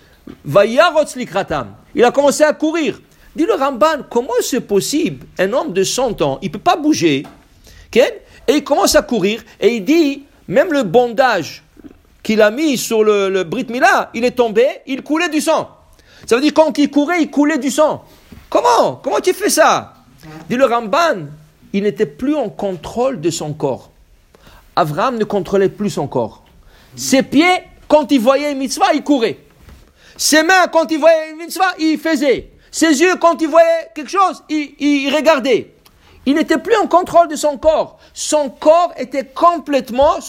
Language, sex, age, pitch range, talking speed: English, male, 50-69, 205-315 Hz, 175 wpm